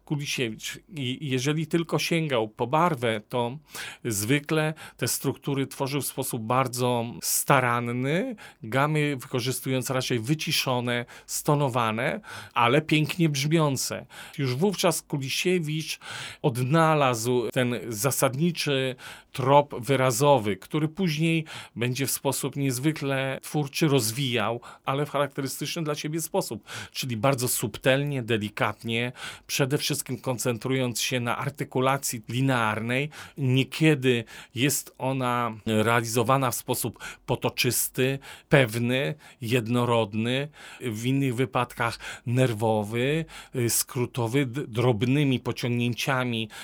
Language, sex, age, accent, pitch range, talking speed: Polish, male, 40-59, native, 120-150 Hz, 95 wpm